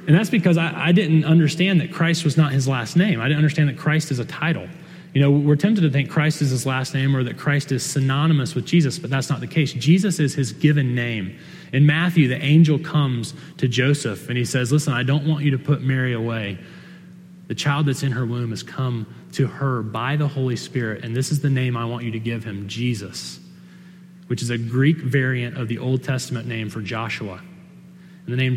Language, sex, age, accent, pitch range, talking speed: English, male, 30-49, American, 125-170 Hz, 230 wpm